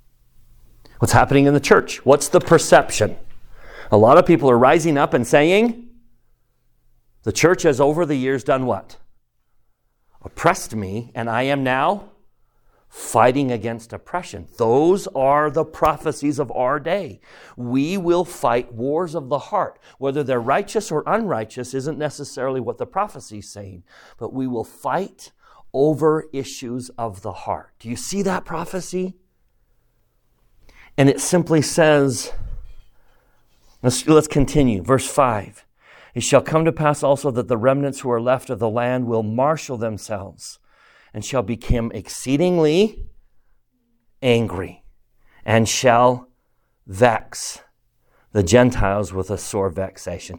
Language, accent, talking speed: English, American, 135 wpm